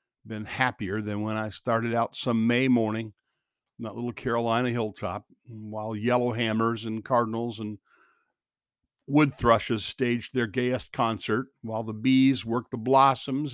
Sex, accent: male, American